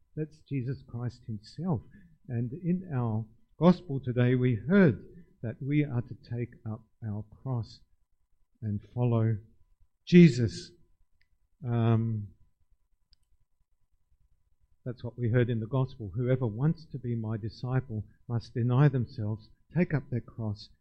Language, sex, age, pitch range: English, male, 50-69, 115-150 Hz